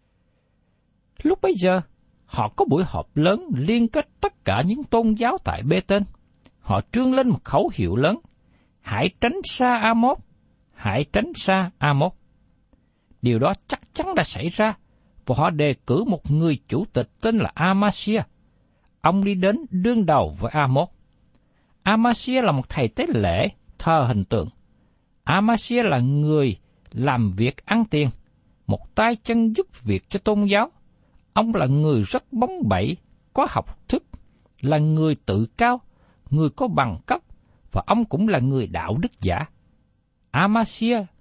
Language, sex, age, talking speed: Vietnamese, male, 60-79, 155 wpm